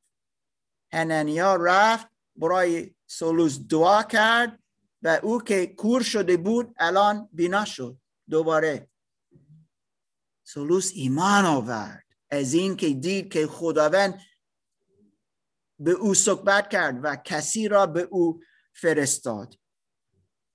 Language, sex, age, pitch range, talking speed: Persian, male, 50-69, 170-235 Hz, 100 wpm